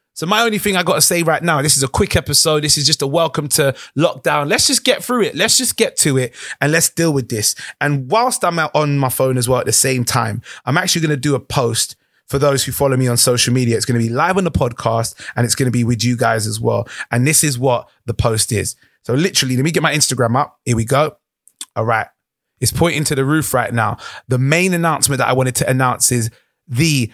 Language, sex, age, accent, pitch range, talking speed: English, male, 20-39, British, 125-155 Hz, 265 wpm